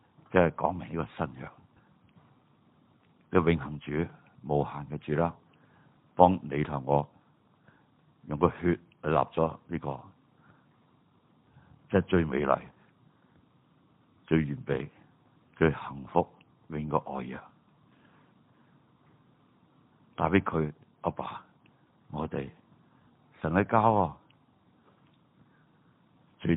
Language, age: Chinese, 60-79